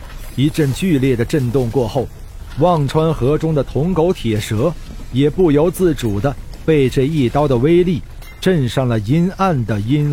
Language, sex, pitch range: Chinese, male, 115-165 Hz